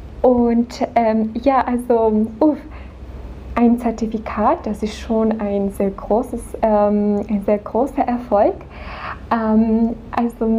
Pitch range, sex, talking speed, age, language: 215-240 Hz, female, 115 wpm, 10-29, Czech